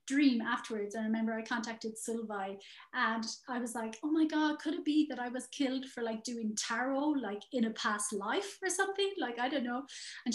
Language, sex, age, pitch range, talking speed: English, female, 30-49, 220-275 Hz, 215 wpm